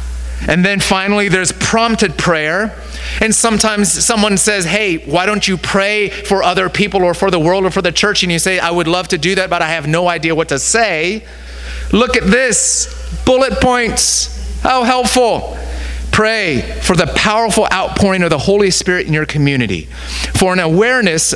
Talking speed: 185 wpm